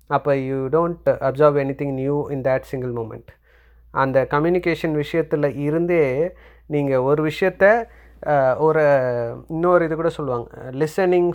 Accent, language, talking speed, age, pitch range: native, Tamil, 115 wpm, 30-49, 135-165 Hz